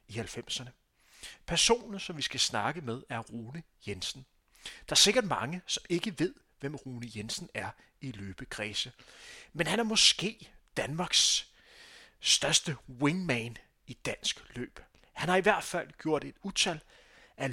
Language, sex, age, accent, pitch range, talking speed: Danish, male, 30-49, native, 125-175 Hz, 145 wpm